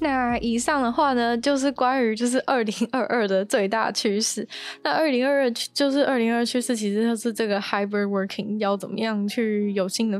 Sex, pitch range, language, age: female, 205-245 Hz, Chinese, 10-29